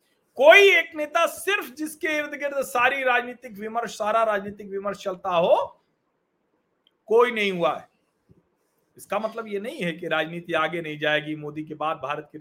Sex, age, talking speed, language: male, 40-59, 165 wpm, Hindi